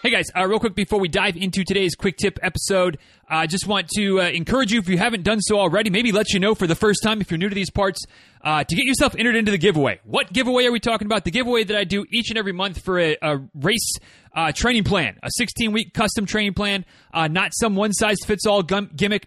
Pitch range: 165-210 Hz